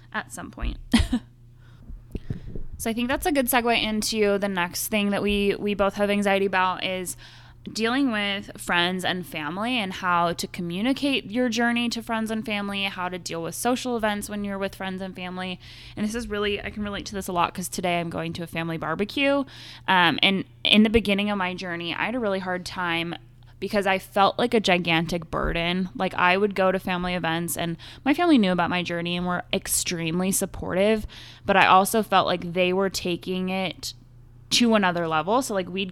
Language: English